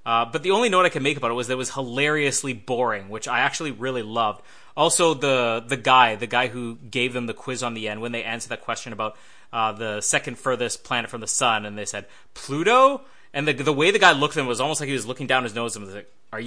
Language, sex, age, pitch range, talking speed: English, male, 20-39, 120-150 Hz, 275 wpm